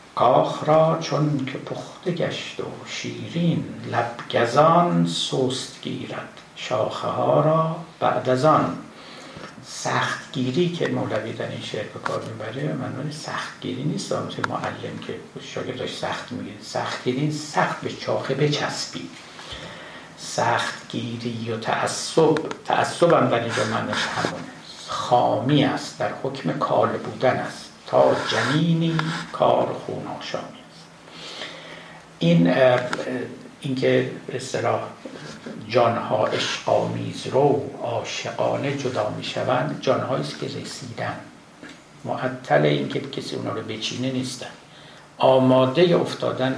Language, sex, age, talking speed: Persian, male, 60-79, 105 wpm